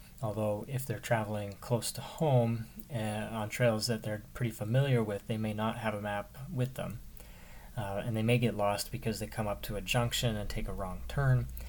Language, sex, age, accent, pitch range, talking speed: English, male, 30-49, American, 100-120 Hz, 210 wpm